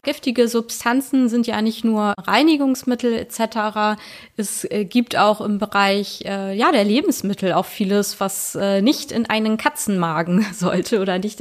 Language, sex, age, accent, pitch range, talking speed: German, female, 20-39, German, 190-225 Hz, 145 wpm